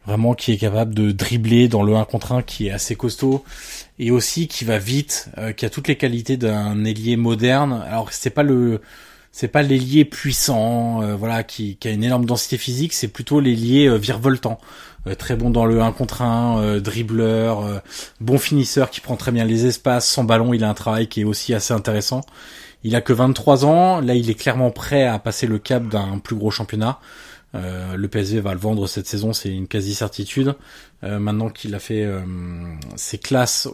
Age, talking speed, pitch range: 20-39, 210 wpm, 105-125 Hz